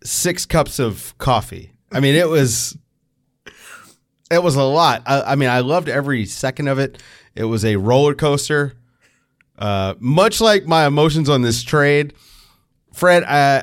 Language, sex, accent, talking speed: English, male, American, 160 wpm